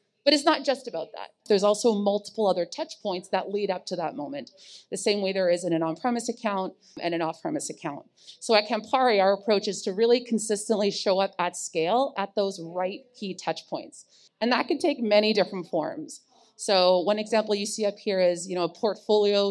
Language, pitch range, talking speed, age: English, 185-230 Hz, 205 wpm, 30-49